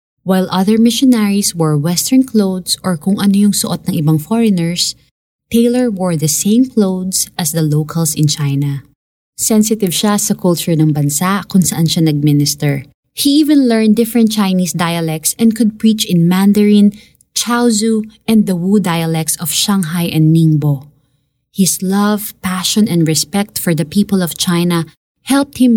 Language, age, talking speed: Filipino, 20-39, 155 wpm